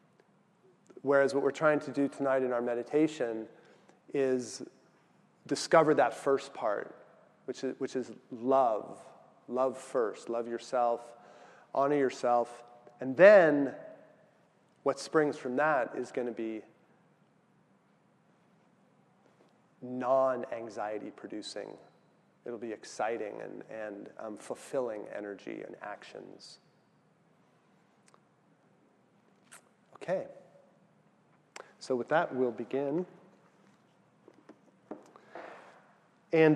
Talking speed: 85 wpm